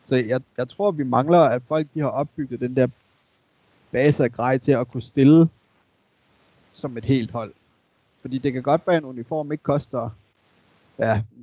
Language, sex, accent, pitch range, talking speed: Danish, male, native, 120-140 Hz, 185 wpm